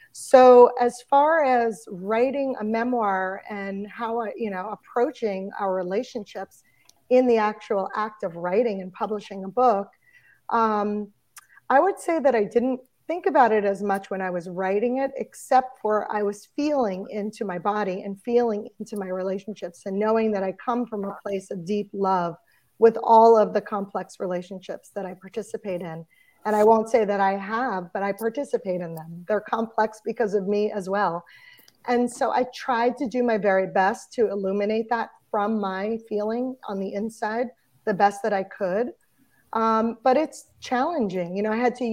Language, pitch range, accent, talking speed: English, 195-235 Hz, American, 180 wpm